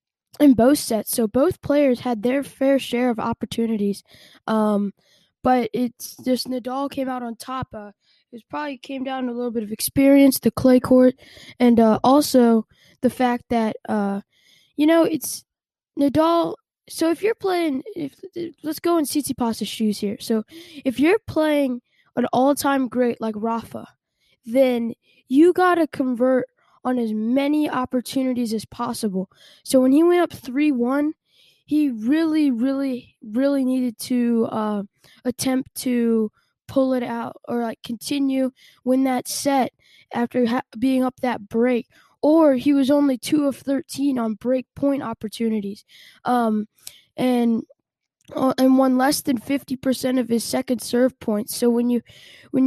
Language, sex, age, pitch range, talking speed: English, female, 10-29, 235-280 Hz, 155 wpm